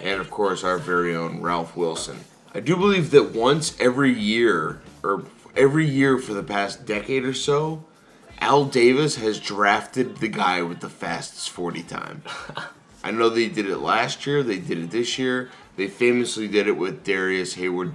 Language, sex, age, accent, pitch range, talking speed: English, male, 20-39, American, 90-135 Hz, 180 wpm